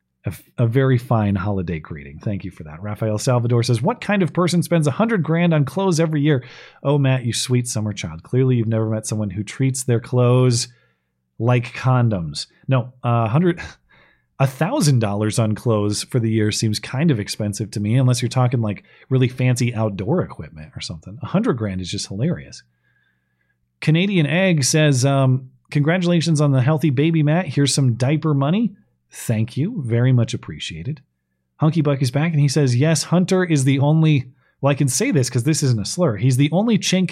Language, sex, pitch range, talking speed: English, male, 105-150 Hz, 190 wpm